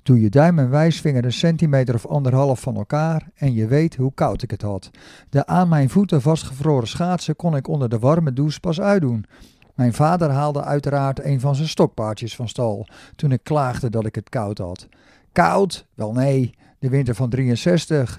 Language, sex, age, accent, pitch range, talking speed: Dutch, male, 50-69, Dutch, 125-155 Hz, 190 wpm